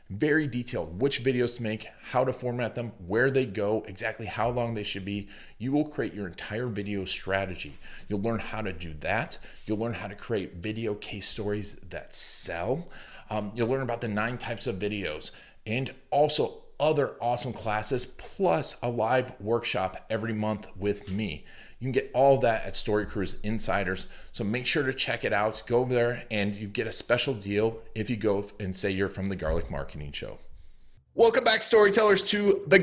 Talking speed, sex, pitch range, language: 190 wpm, male, 105-135 Hz, English